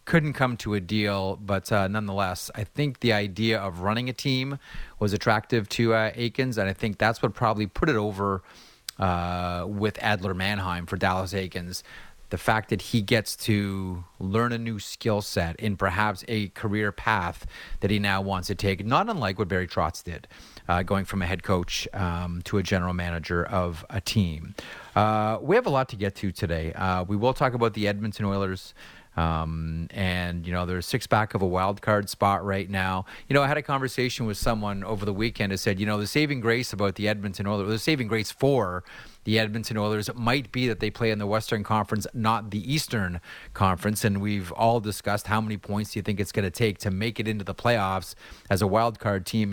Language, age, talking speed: English, 30-49, 215 wpm